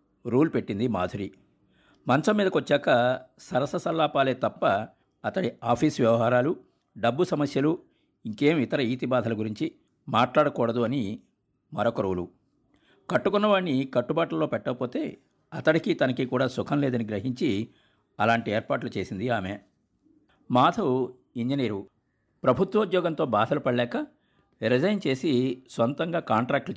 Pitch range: 115-155 Hz